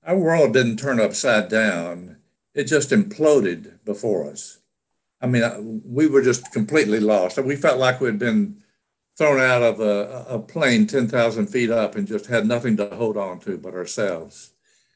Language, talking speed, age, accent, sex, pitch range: English, 170 wpm, 60-79, American, male, 110-145 Hz